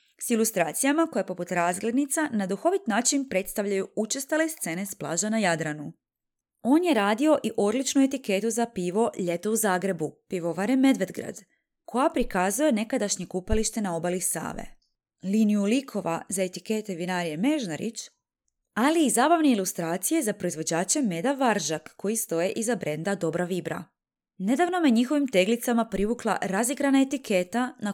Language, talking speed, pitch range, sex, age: Croatian, 135 wpm, 185-270 Hz, female, 20-39